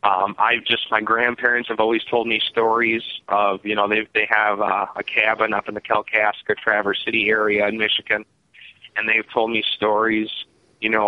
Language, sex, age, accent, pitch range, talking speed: English, male, 20-39, American, 105-120 Hz, 190 wpm